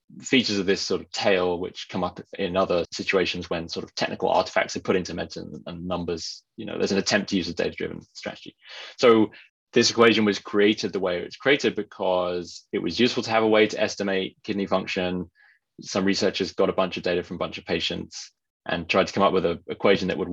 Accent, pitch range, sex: British, 90-105 Hz, male